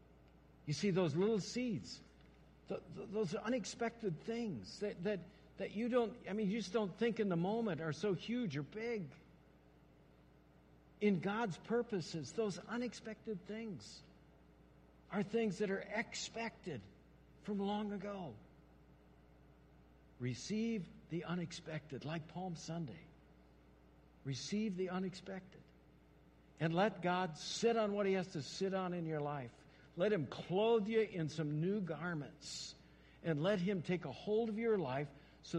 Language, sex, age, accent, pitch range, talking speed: English, male, 60-79, American, 140-205 Hz, 140 wpm